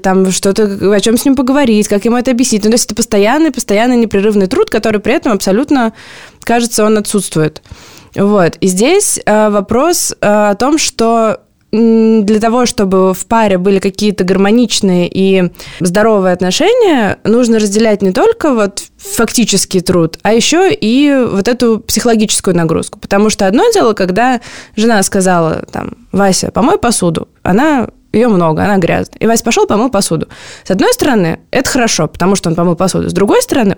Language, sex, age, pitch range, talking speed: Russian, female, 20-39, 190-235 Hz, 155 wpm